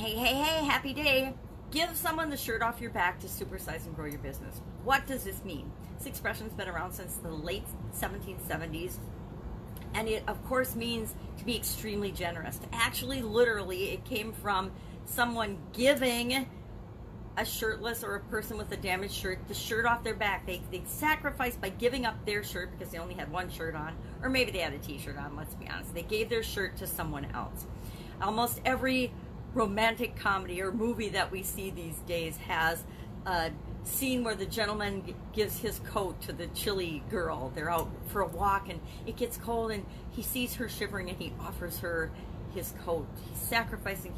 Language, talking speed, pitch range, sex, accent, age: English, 190 wpm, 190-250 Hz, female, American, 40-59